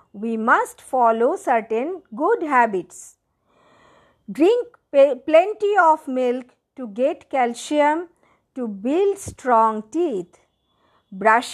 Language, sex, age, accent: English, female, 50-69, Indian